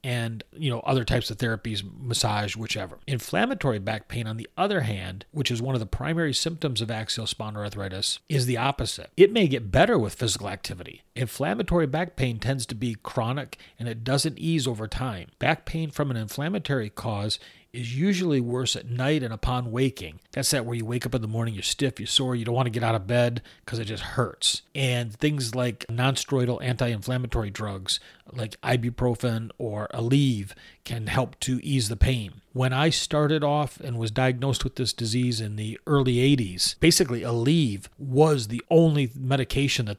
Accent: American